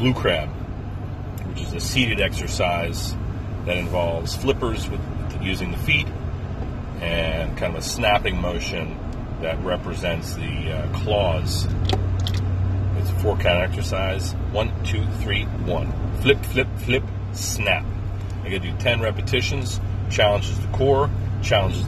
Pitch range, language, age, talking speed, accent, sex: 95-105 Hz, English, 40-59, 130 wpm, American, male